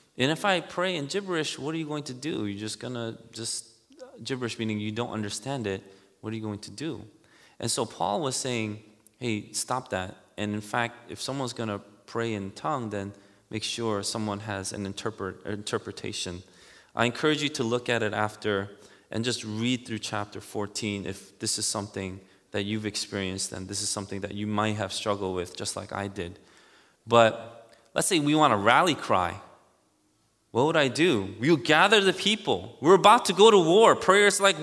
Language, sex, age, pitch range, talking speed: English, male, 20-39, 105-160 Hz, 200 wpm